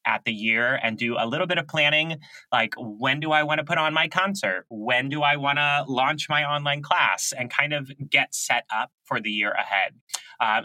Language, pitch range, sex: English, 115-145 Hz, male